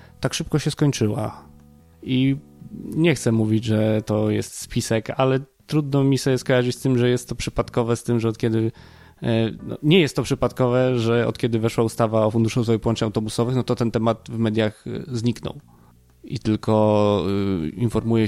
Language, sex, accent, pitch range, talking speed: Polish, male, native, 110-125 Hz, 170 wpm